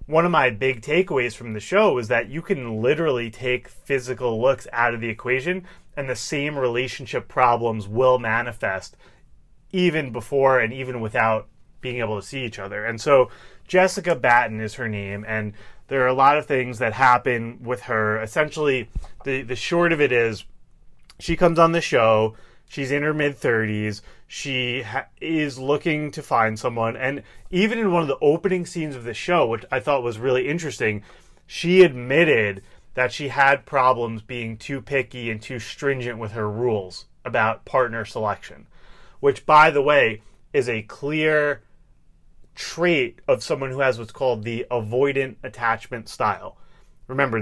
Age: 30-49